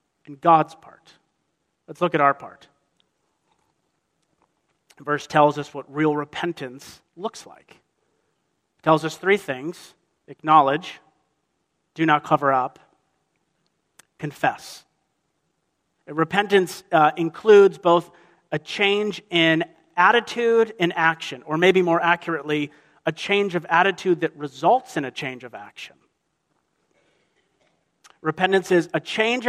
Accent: American